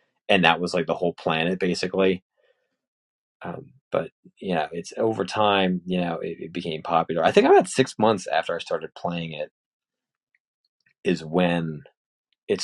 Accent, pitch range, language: American, 85-130 Hz, English